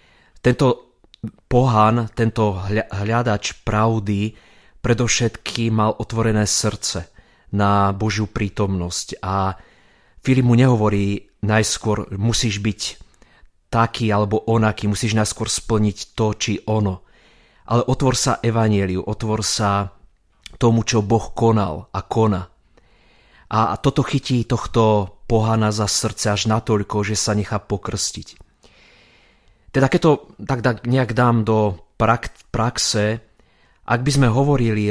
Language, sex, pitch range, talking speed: Slovak, male, 100-115 Hz, 110 wpm